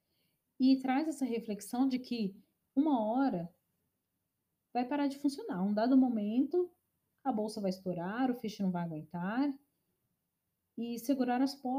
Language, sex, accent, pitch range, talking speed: Portuguese, female, Brazilian, 200-260 Hz, 135 wpm